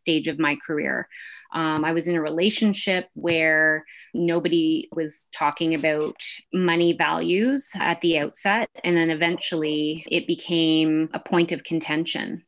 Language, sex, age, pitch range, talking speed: English, female, 20-39, 165-200 Hz, 140 wpm